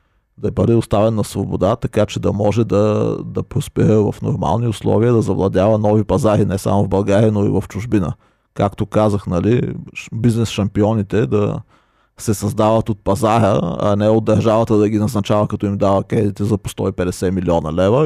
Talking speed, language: 170 wpm, Bulgarian